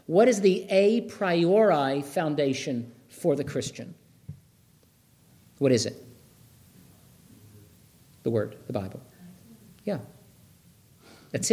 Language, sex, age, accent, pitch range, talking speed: English, male, 50-69, American, 130-185 Hz, 95 wpm